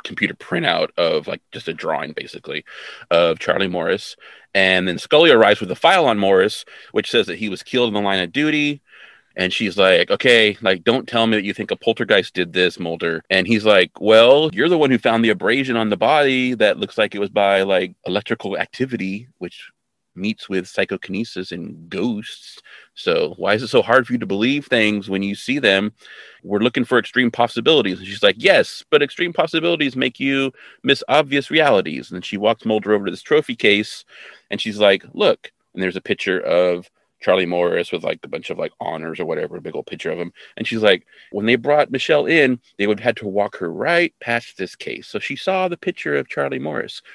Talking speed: 220 wpm